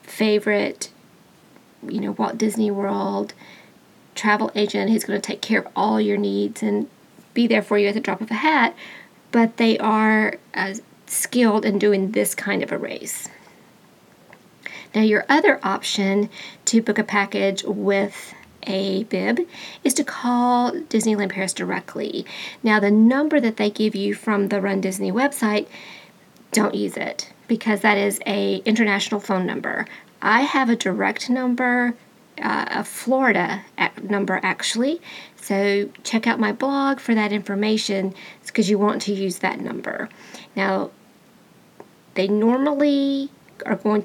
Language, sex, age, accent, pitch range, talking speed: English, female, 40-59, American, 205-240 Hz, 150 wpm